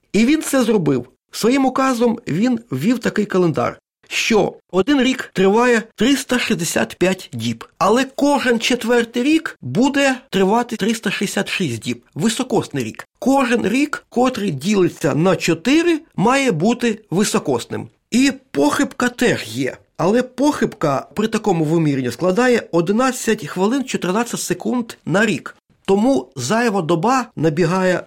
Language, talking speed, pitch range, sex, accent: Ukrainian, 120 wpm, 165-235 Hz, male, native